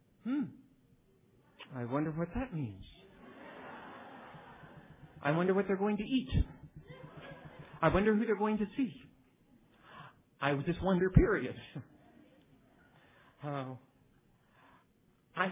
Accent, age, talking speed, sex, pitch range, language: American, 50-69, 95 wpm, male, 115-165 Hz, English